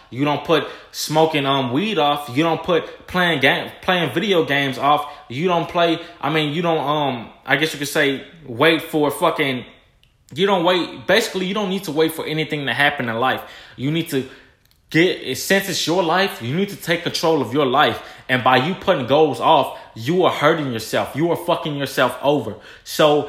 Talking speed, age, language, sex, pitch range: 205 wpm, 20-39, English, male, 140-170 Hz